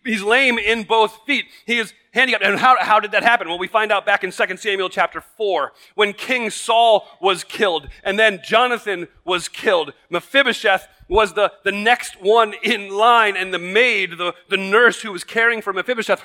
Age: 40-59